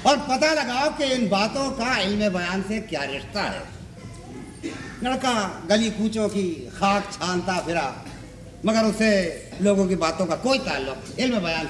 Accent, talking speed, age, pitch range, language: native, 155 wpm, 60-79, 160-225 Hz, Hindi